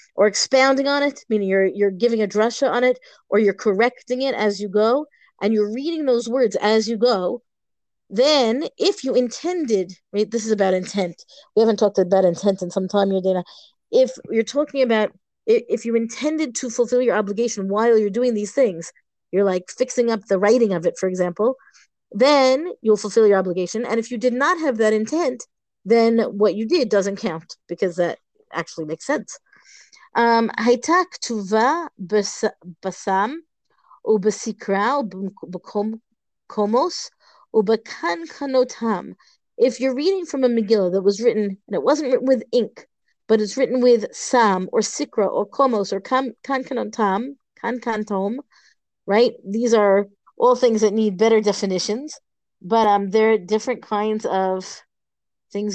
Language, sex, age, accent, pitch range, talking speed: English, female, 30-49, American, 200-255 Hz, 150 wpm